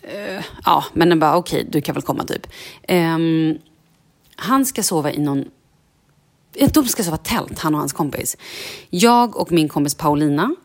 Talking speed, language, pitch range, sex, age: 175 wpm, Swedish, 150-180 Hz, female, 30-49